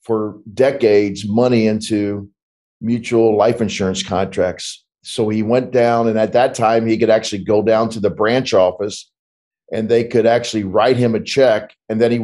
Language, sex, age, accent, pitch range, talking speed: English, male, 50-69, American, 105-120 Hz, 175 wpm